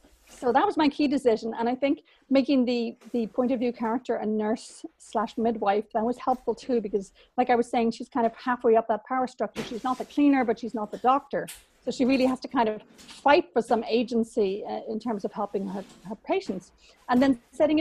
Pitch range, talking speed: 220-265 Hz, 225 wpm